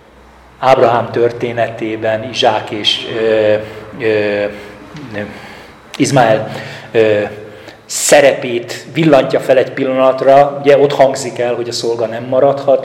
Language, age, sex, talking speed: Hungarian, 40-59, male, 105 wpm